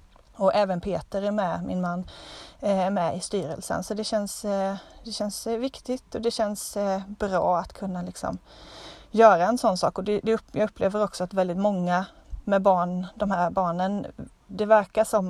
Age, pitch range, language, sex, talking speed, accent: 30-49, 180-210 Hz, Swedish, female, 175 wpm, native